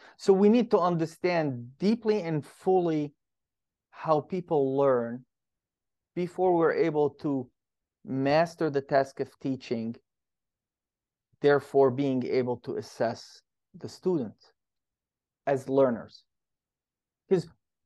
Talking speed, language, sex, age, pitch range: 100 wpm, English, male, 30-49, 135-175 Hz